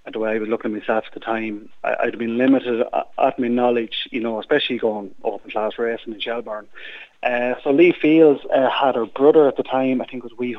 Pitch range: 110-125 Hz